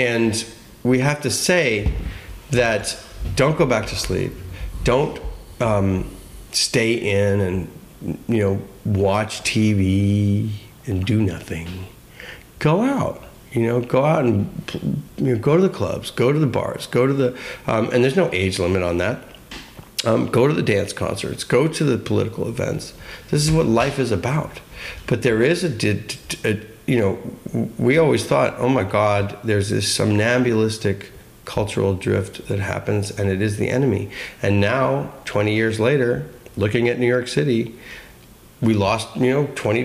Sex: male